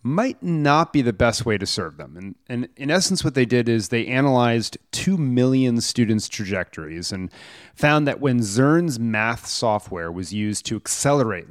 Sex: male